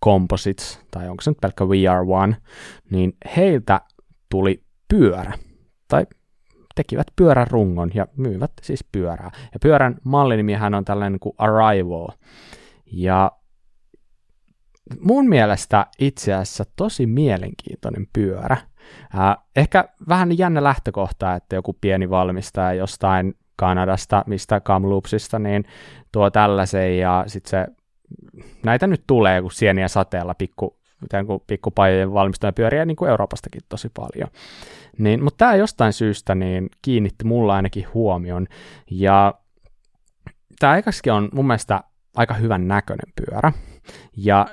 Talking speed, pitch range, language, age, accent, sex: 115 wpm, 95-130 Hz, Finnish, 20-39, native, male